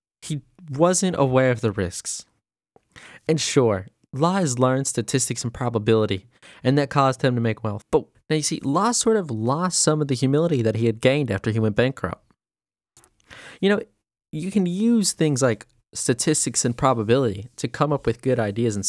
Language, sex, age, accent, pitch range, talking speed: English, male, 20-39, American, 110-160 Hz, 185 wpm